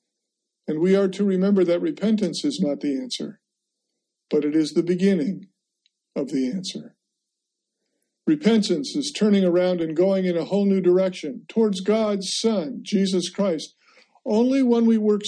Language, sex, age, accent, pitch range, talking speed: English, male, 50-69, American, 170-210 Hz, 155 wpm